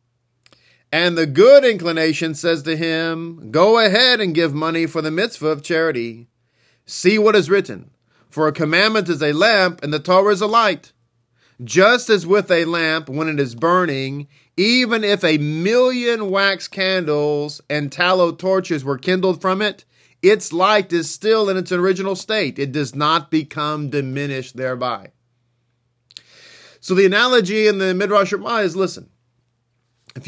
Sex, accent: male, American